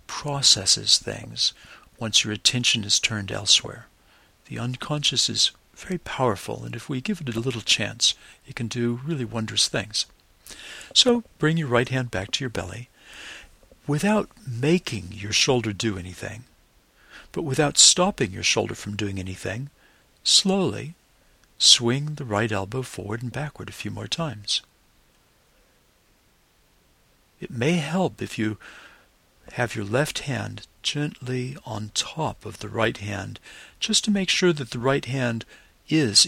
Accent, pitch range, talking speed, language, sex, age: American, 105-140 Hz, 145 wpm, English, male, 60-79